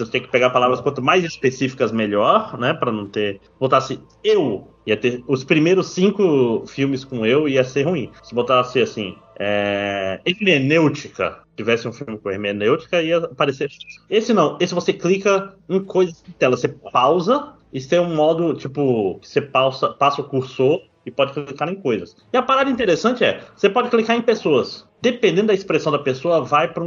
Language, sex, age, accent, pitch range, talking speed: Portuguese, male, 20-39, Brazilian, 120-170 Hz, 185 wpm